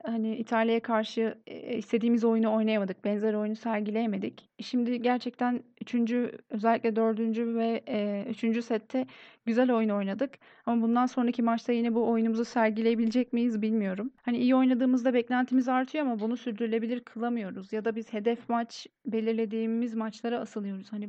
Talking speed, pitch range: 135 wpm, 220-245 Hz